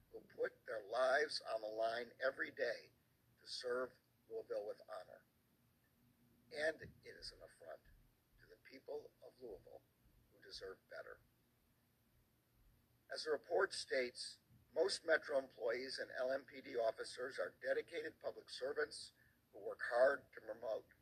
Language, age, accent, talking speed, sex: English, 50-69, American, 130 wpm, male